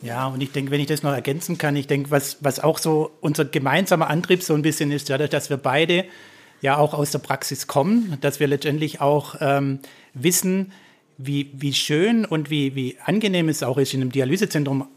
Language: German